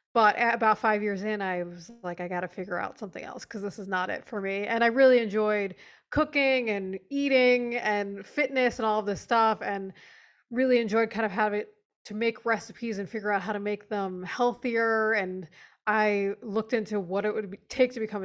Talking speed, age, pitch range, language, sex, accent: 215 wpm, 20-39, 200-235 Hz, English, female, American